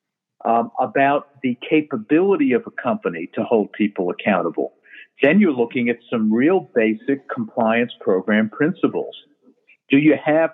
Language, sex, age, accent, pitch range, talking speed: English, male, 50-69, American, 115-145 Hz, 135 wpm